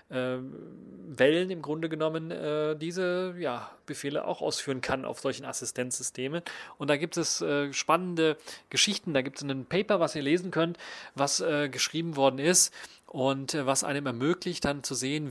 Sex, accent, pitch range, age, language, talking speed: male, German, 130-155 Hz, 30-49, German, 150 wpm